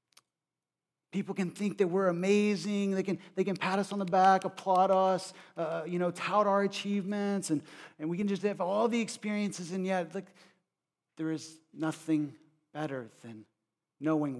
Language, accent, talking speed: English, American, 175 wpm